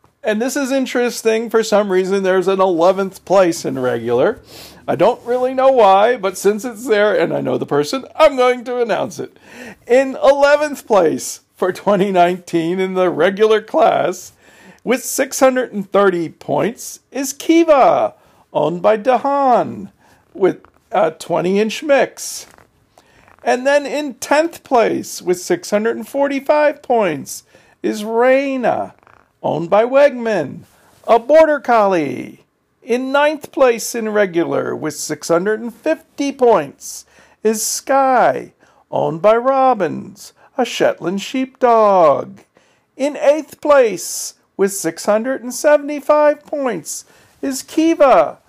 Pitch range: 200-280 Hz